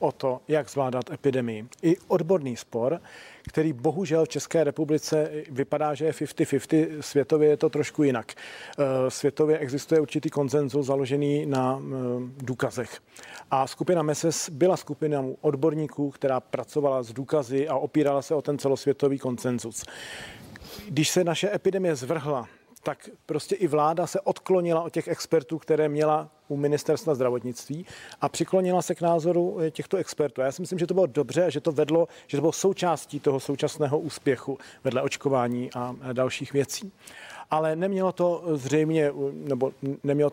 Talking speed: 150 wpm